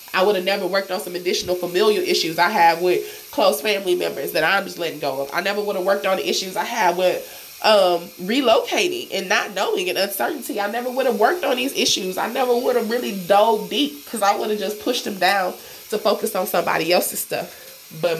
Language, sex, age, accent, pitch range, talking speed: English, female, 20-39, American, 170-220 Hz, 230 wpm